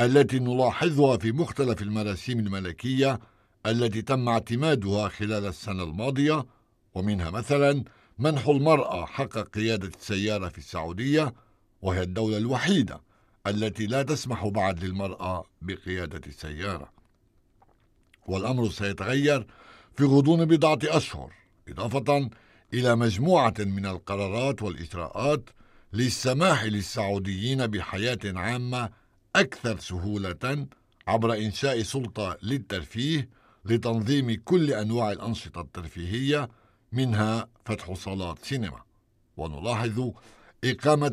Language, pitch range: Arabic, 100-130 Hz